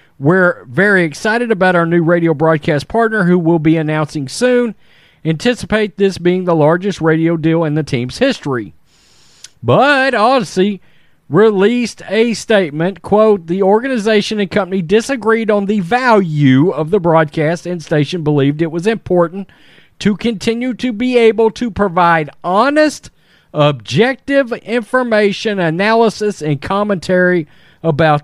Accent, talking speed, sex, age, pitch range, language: American, 130 wpm, male, 40-59, 160-220 Hz, English